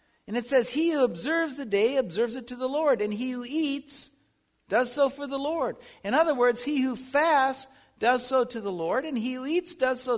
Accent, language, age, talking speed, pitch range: American, English, 60-79, 230 wpm, 230-320 Hz